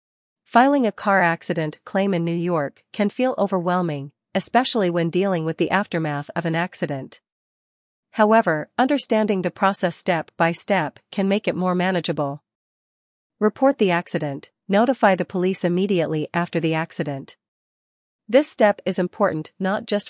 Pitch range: 165-210 Hz